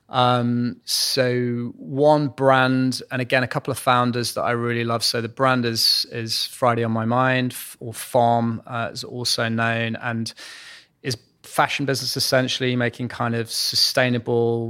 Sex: male